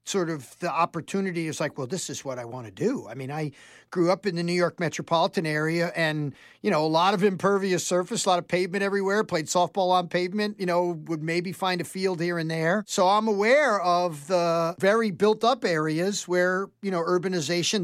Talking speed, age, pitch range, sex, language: 220 wpm, 50-69, 165-210 Hz, male, English